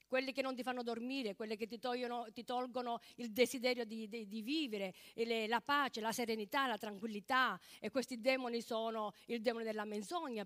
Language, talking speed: Italian, 195 wpm